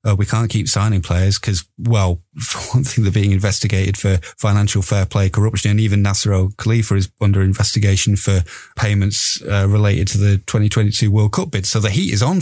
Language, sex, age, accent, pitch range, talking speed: English, male, 30-49, British, 100-120 Hz, 200 wpm